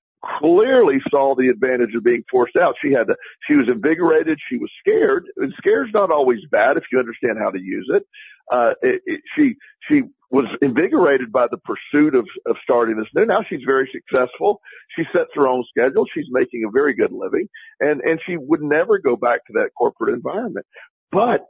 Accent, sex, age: American, male, 50-69